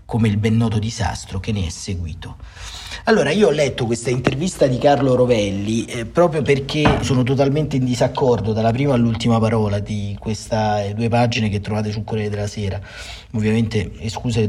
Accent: native